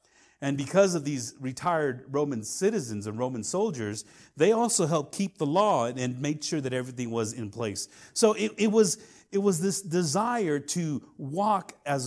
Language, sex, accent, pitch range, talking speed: English, male, American, 135-190 Hz, 175 wpm